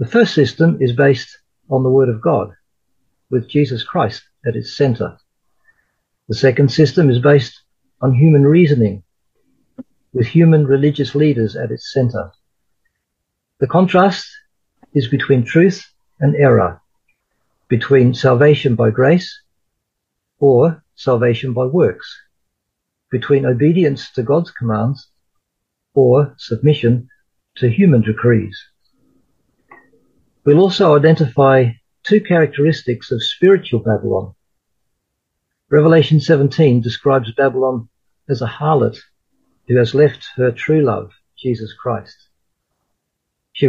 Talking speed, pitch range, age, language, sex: 110 wpm, 120-150 Hz, 50-69, English, male